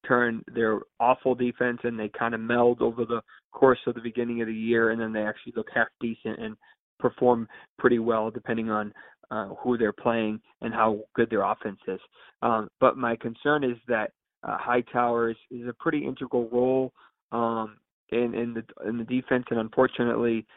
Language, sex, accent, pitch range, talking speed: English, male, American, 115-125 Hz, 190 wpm